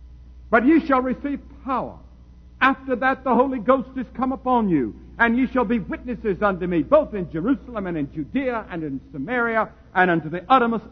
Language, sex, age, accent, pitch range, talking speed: English, male, 60-79, American, 165-220 Hz, 185 wpm